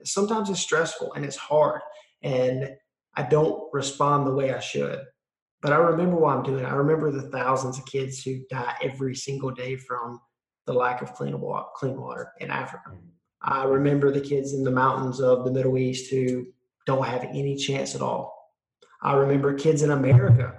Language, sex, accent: English, male, American